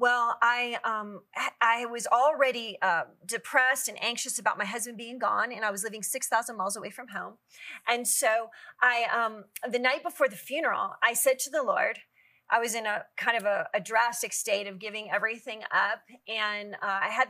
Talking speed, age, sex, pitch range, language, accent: 195 wpm, 30-49, female, 210-260 Hz, English, American